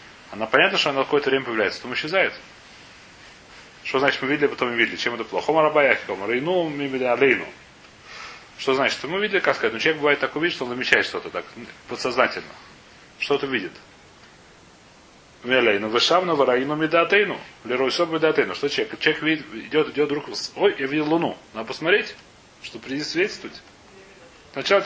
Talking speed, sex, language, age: 155 wpm, male, Russian, 30-49